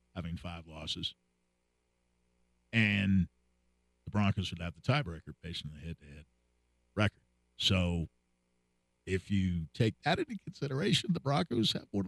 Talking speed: 140 wpm